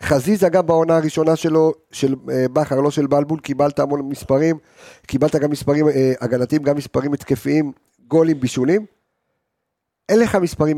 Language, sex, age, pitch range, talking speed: Hebrew, male, 50-69, 120-160 Hz, 150 wpm